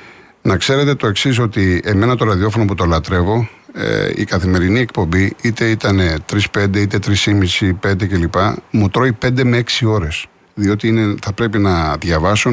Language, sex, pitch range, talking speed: Greek, male, 95-120 Hz, 175 wpm